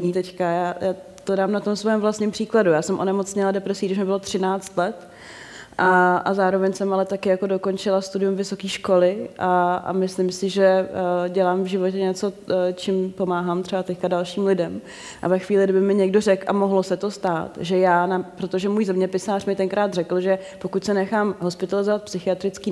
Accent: native